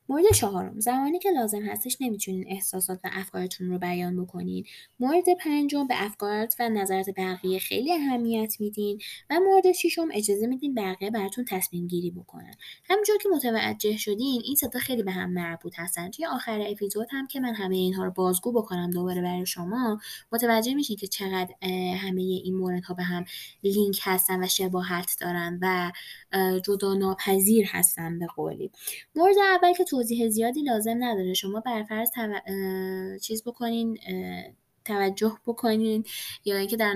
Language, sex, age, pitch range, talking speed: Persian, female, 20-39, 185-230 Hz, 155 wpm